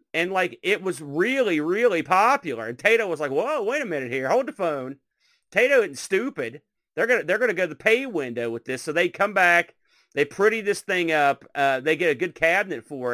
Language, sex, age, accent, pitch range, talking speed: English, male, 40-59, American, 135-185 Hz, 225 wpm